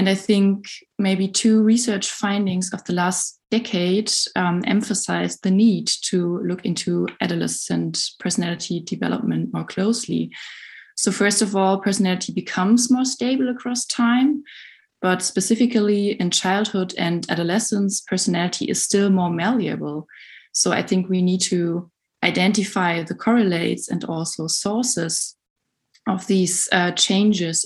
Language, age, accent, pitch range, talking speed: English, 20-39, German, 180-220 Hz, 130 wpm